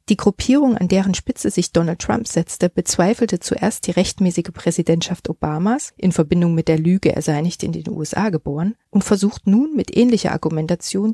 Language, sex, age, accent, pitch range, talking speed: German, female, 40-59, German, 170-205 Hz, 180 wpm